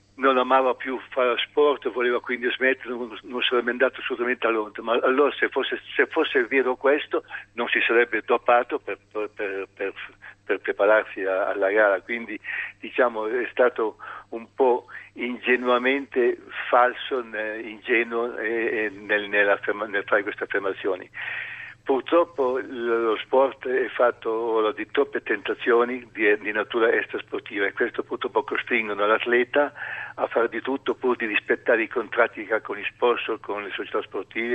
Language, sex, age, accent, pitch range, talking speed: Italian, male, 60-79, native, 115-145 Hz, 145 wpm